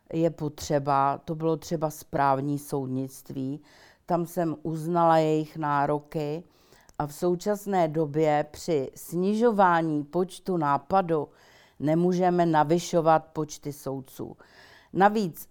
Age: 50-69